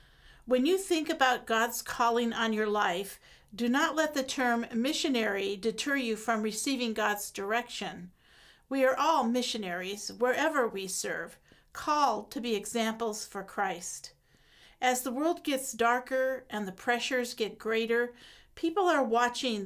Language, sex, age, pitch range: English, female, 50-69, 205-255 Hz